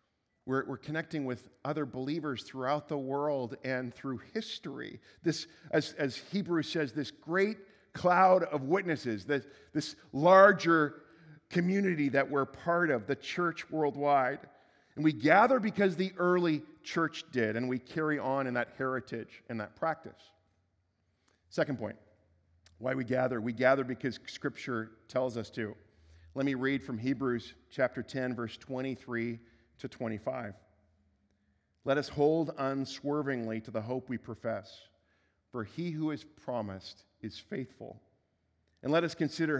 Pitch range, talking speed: 110-150 Hz, 140 wpm